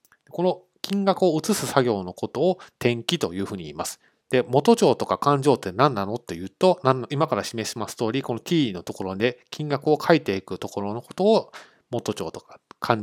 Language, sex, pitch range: Japanese, male, 105-155 Hz